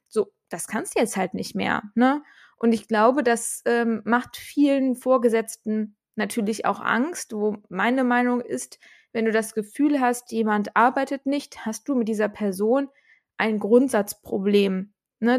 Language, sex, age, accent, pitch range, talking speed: German, female, 20-39, German, 215-260 Hz, 155 wpm